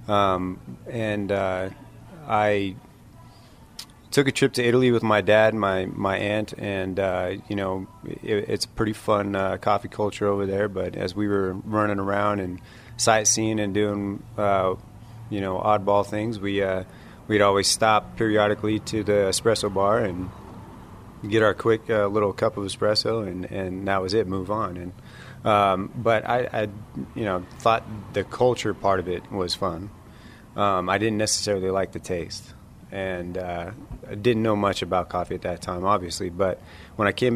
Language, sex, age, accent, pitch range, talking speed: English, male, 30-49, American, 95-110 Hz, 175 wpm